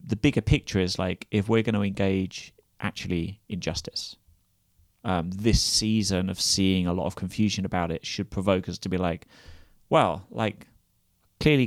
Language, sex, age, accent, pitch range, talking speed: English, male, 30-49, British, 95-110 Hz, 165 wpm